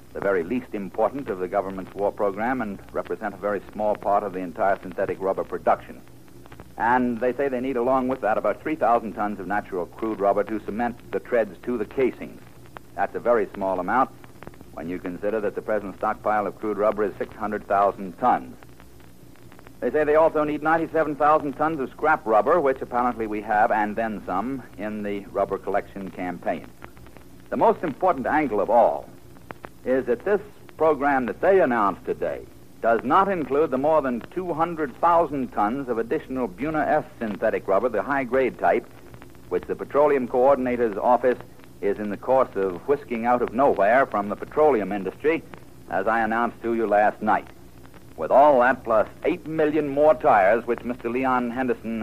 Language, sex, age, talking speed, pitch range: English, male, 60-79, 175 wpm, 105-145 Hz